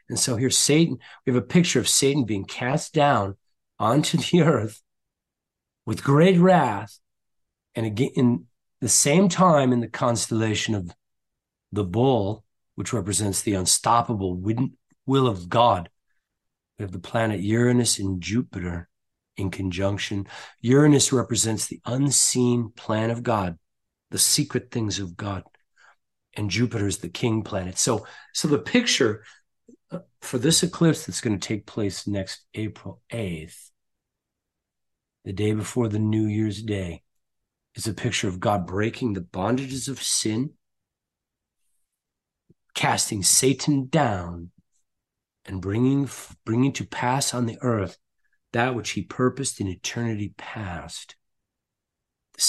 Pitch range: 100-130 Hz